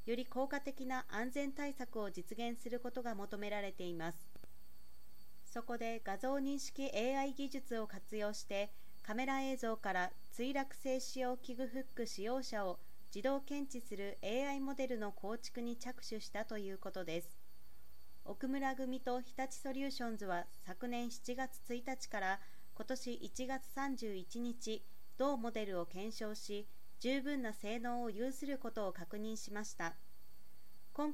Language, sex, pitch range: Japanese, female, 205-260 Hz